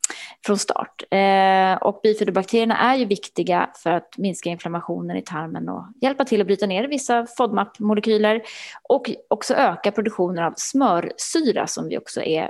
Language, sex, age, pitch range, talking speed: Swedish, female, 20-39, 180-235 Hz, 155 wpm